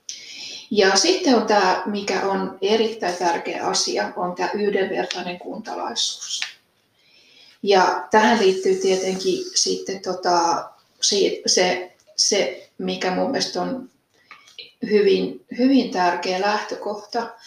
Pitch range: 190-225 Hz